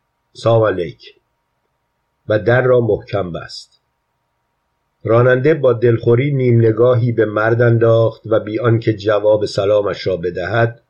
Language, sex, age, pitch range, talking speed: Persian, male, 50-69, 105-120 Hz, 110 wpm